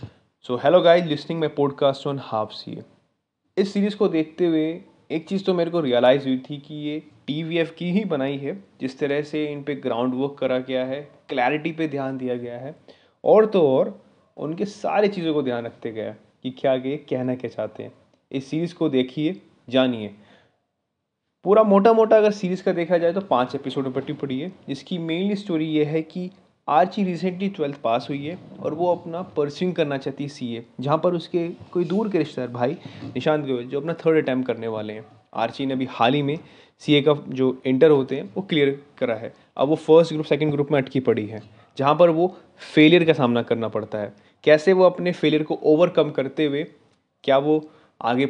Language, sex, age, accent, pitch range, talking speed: Hindi, male, 20-39, native, 130-165 Hz, 205 wpm